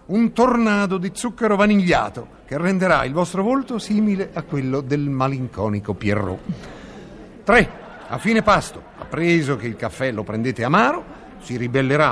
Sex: male